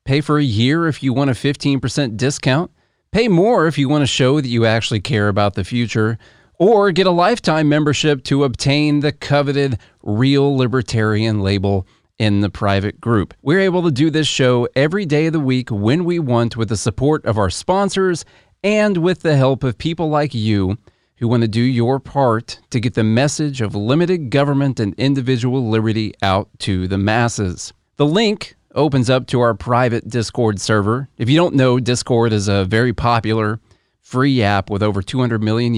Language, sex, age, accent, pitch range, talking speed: English, male, 30-49, American, 105-140 Hz, 190 wpm